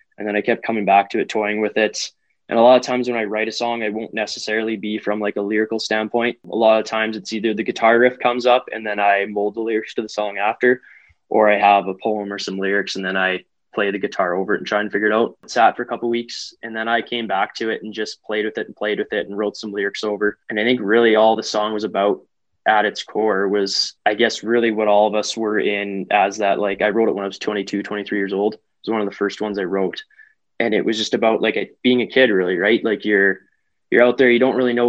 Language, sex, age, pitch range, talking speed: English, male, 20-39, 105-115 Hz, 285 wpm